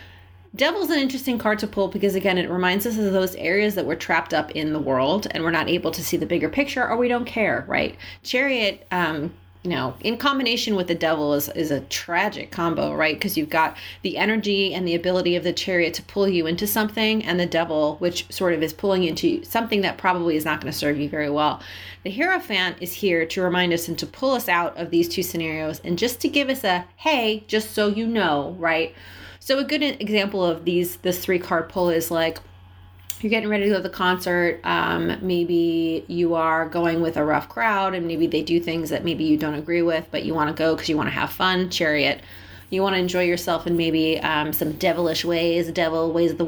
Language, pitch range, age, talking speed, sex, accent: English, 160-200 Hz, 30-49, 230 wpm, female, American